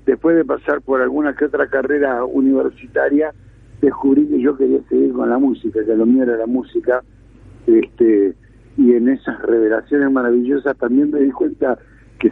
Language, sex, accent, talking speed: Spanish, male, Argentinian, 165 wpm